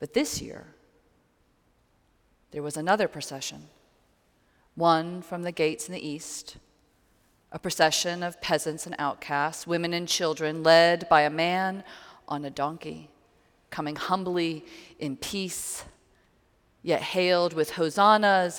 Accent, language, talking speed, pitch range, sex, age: American, English, 125 wpm, 145-180 Hz, female, 40-59